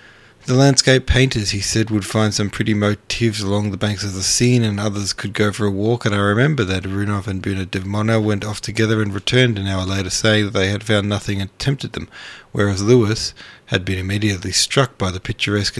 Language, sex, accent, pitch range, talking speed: English, male, Australian, 95-115 Hz, 215 wpm